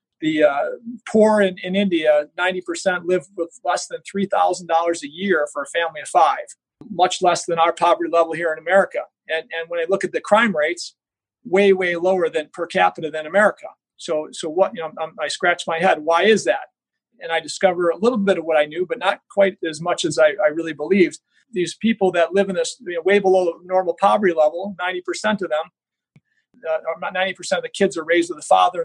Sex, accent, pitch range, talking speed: male, American, 165-205 Hz, 215 wpm